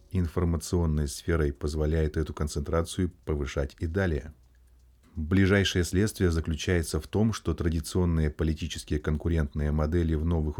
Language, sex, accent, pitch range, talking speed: Russian, male, native, 80-95 Hz, 115 wpm